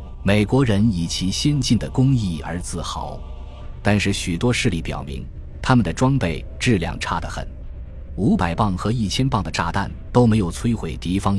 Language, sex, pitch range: Chinese, male, 80-110 Hz